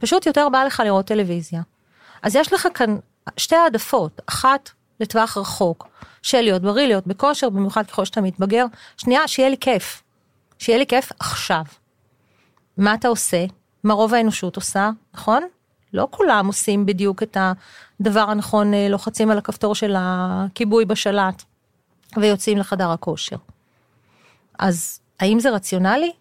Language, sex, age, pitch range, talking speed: Hebrew, female, 40-59, 195-255 Hz, 135 wpm